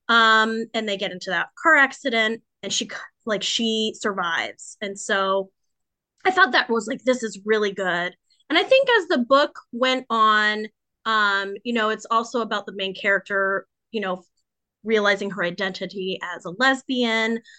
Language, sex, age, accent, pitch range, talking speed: English, female, 20-39, American, 210-300 Hz, 165 wpm